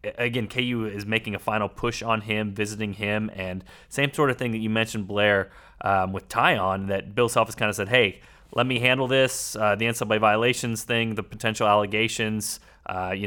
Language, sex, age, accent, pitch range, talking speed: English, male, 30-49, American, 100-120 Hz, 205 wpm